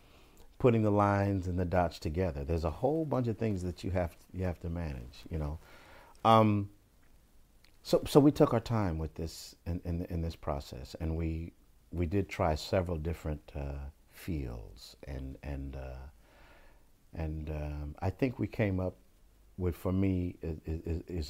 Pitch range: 80-100 Hz